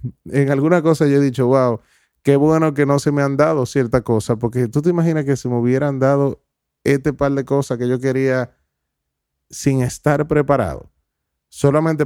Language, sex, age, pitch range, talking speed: Spanish, male, 30-49, 115-140 Hz, 185 wpm